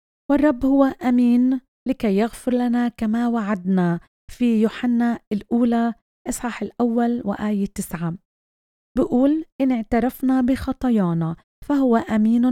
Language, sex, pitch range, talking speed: Arabic, female, 205-250 Hz, 100 wpm